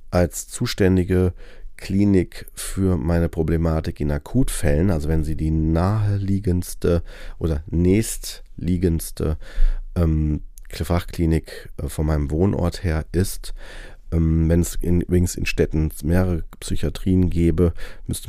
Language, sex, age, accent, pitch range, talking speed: German, male, 40-59, German, 80-95 Hz, 110 wpm